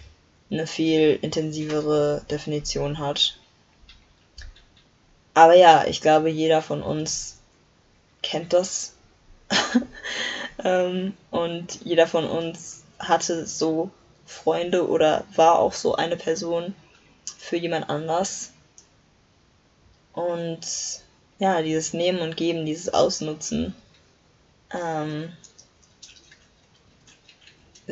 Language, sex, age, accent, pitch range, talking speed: German, female, 20-39, German, 155-185 Hz, 85 wpm